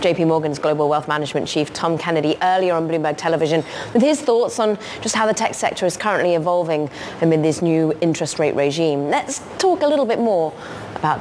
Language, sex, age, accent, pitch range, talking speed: English, female, 20-39, British, 170-255 Hz, 200 wpm